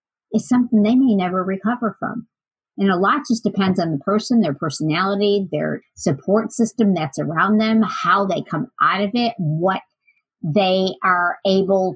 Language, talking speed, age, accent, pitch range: English, 165 wpm, 50-69, American, 175-210 Hz